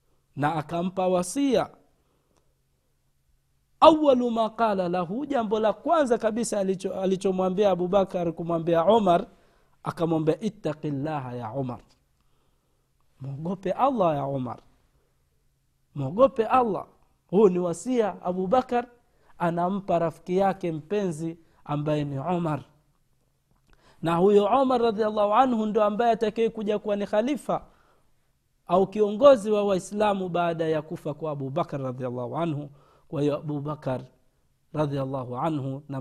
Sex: male